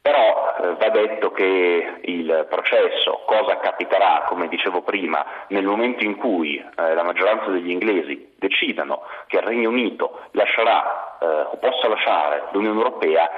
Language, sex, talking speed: Italian, male, 150 wpm